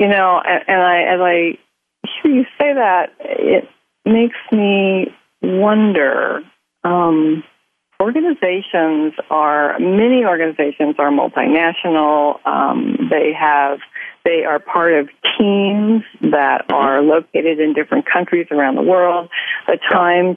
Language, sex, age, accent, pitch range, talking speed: English, female, 40-59, American, 165-205 Hz, 115 wpm